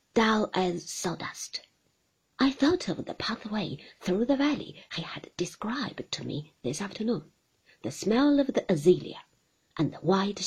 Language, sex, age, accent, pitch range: Chinese, female, 40-59, British, 180-275 Hz